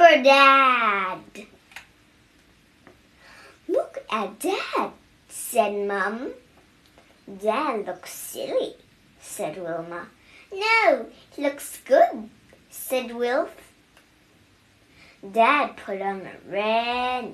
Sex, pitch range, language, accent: male, 215-325 Hz, Chinese, American